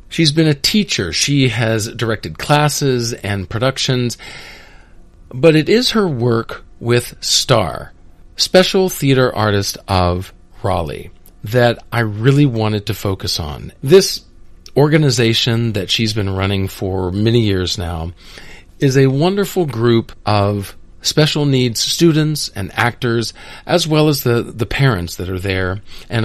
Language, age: English, 40-59